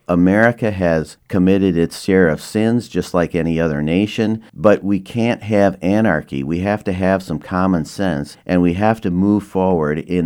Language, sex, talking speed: English, male, 180 wpm